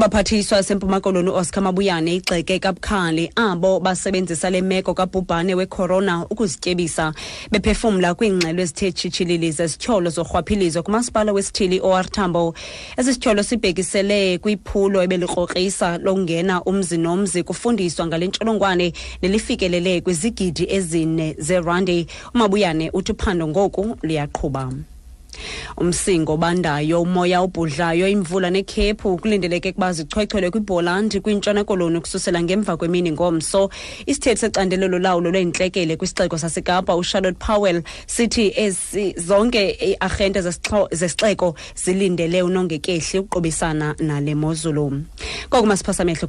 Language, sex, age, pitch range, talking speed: English, female, 30-49, 175-200 Hz, 110 wpm